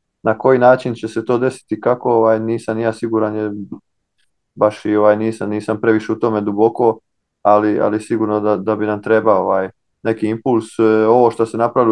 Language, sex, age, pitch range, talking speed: Croatian, male, 20-39, 105-115 Hz, 185 wpm